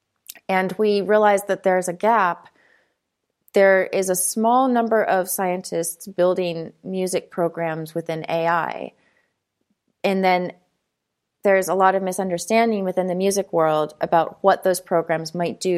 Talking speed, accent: 135 wpm, American